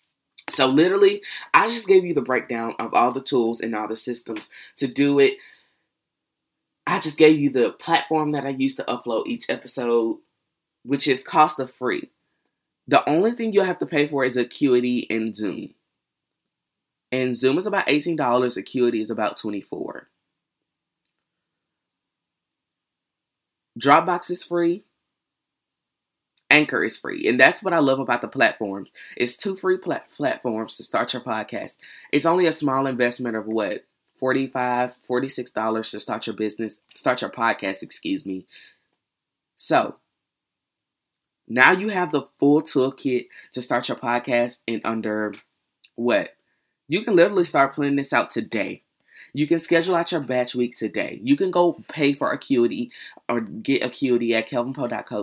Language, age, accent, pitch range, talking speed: English, 20-39, American, 120-155 Hz, 150 wpm